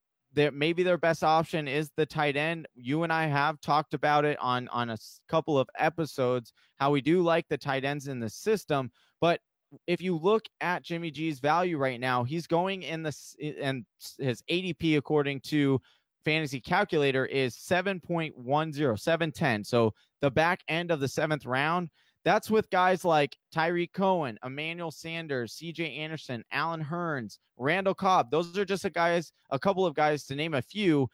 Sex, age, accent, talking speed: male, 20-39, American, 180 wpm